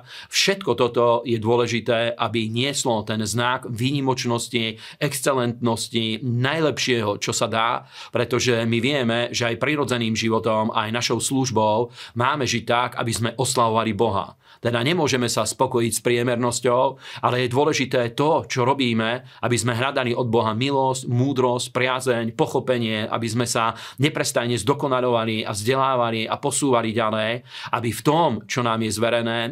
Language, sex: Slovak, male